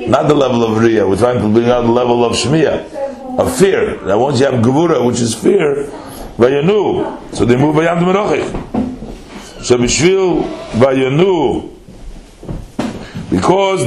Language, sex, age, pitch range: English, male, 60-79, 120-175 Hz